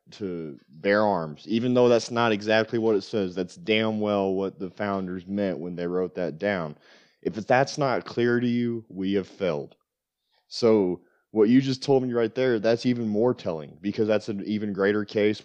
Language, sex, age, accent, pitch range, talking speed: English, male, 30-49, American, 90-110 Hz, 195 wpm